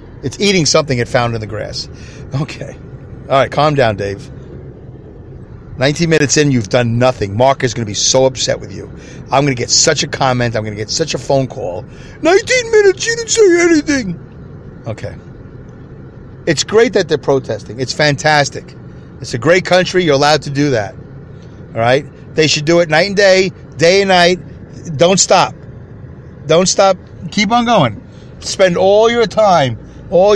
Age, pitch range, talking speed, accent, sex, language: 40-59, 130-180 Hz, 180 wpm, American, male, English